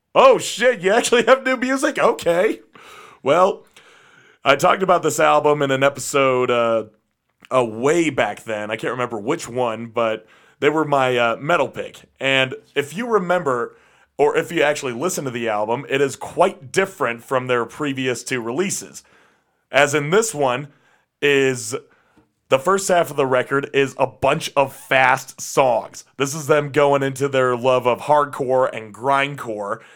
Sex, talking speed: male, 165 wpm